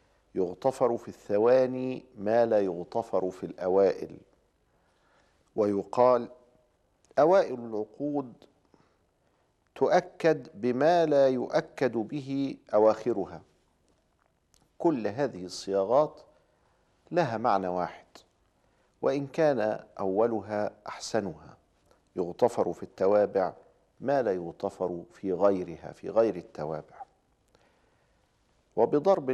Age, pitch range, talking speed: 50-69, 100-130 Hz, 80 wpm